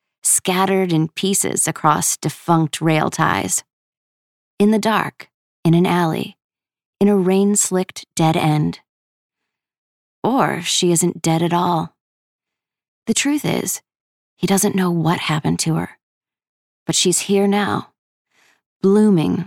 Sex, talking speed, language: female, 120 wpm, English